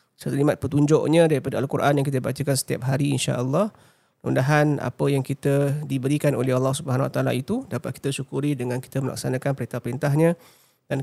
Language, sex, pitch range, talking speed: Malay, male, 130-150 Hz, 160 wpm